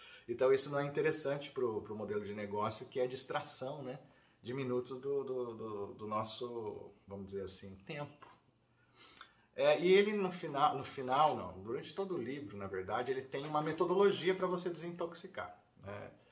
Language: Portuguese